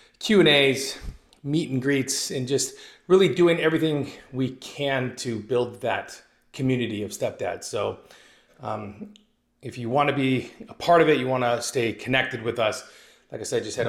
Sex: male